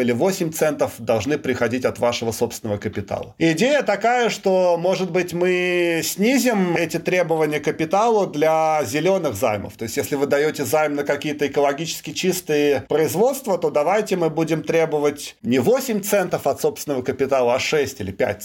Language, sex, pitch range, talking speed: Russian, male, 135-175 Hz, 160 wpm